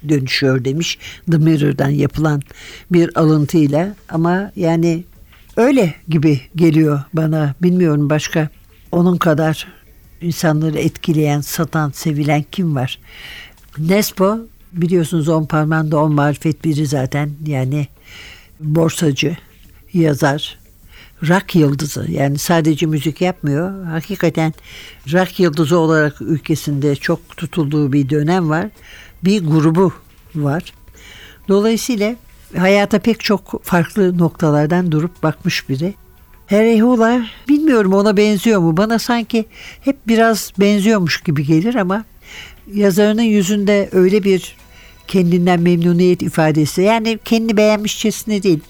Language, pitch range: Turkish, 150-200 Hz